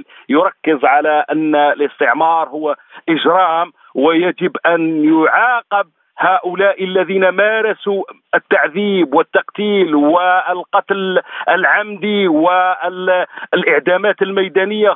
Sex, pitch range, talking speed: male, 155-190 Hz, 70 wpm